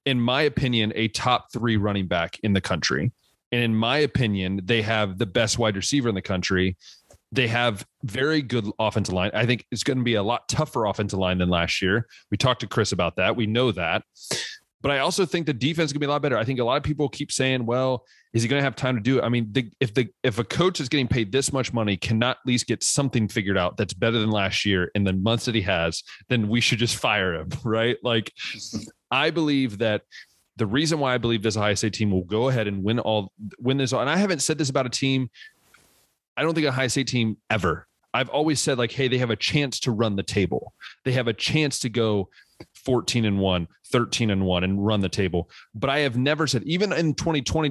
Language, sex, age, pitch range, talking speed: English, male, 30-49, 105-135 Hz, 250 wpm